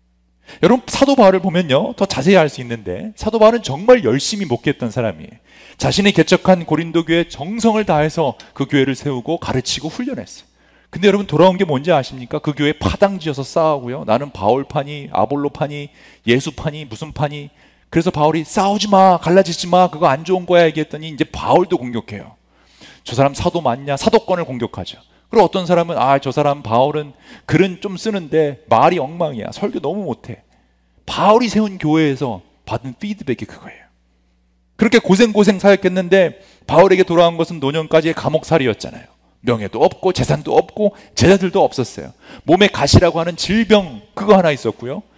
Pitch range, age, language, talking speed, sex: 135-190 Hz, 40-59, English, 140 wpm, male